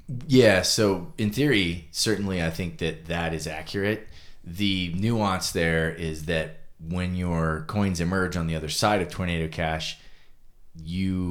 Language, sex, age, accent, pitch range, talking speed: English, male, 30-49, American, 80-95 Hz, 150 wpm